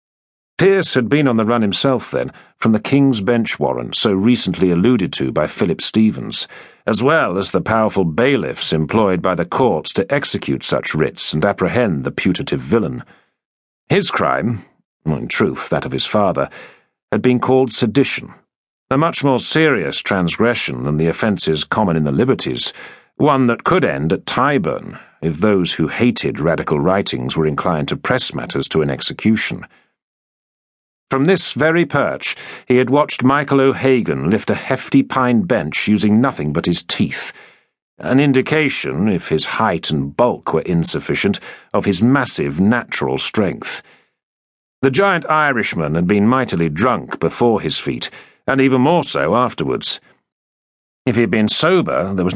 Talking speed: 160 wpm